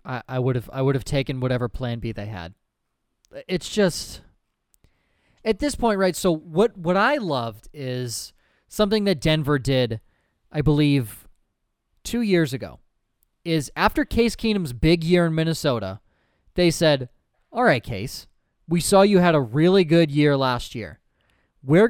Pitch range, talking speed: 125-180 Hz, 160 wpm